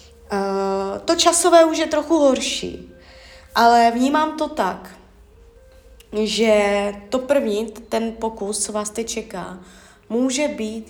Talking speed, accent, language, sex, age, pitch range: 120 wpm, native, Czech, female, 20-39, 205-265 Hz